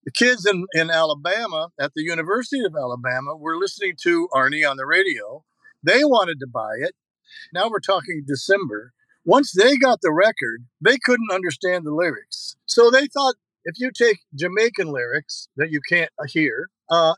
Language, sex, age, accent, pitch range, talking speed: English, male, 50-69, American, 150-200 Hz, 170 wpm